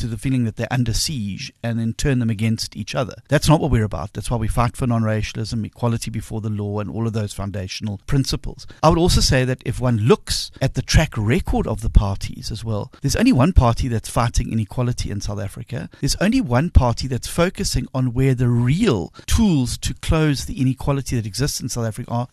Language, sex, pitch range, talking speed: English, male, 115-150 Hz, 225 wpm